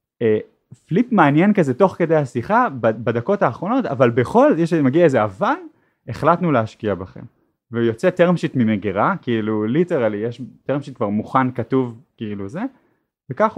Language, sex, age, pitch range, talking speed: Hebrew, male, 30-49, 110-170 Hz, 140 wpm